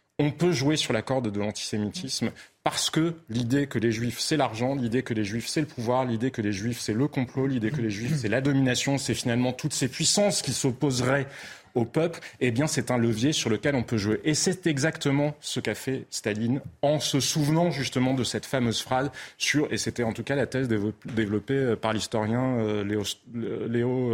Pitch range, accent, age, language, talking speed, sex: 115-145 Hz, French, 30-49, French, 210 wpm, male